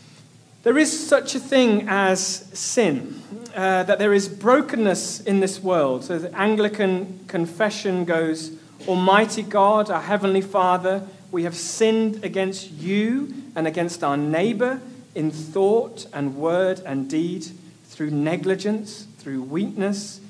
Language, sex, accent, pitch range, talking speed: English, male, British, 155-205 Hz, 130 wpm